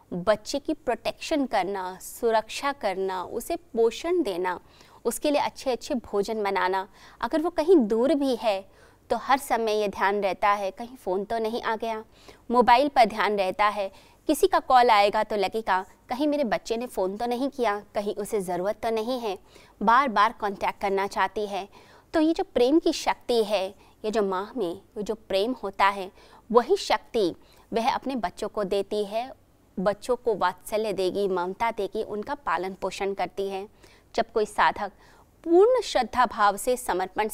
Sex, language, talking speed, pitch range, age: female, Hindi, 170 wpm, 195-250 Hz, 20-39